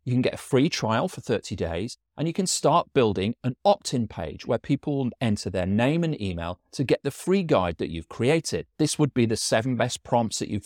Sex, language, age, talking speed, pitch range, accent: male, English, 40-59, 235 wpm, 105-165 Hz, British